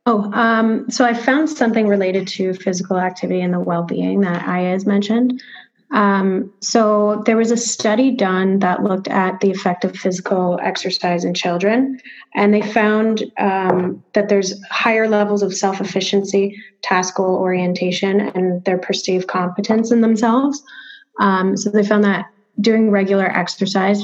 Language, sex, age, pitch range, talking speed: English, female, 30-49, 185-215 Hz, 150 wpm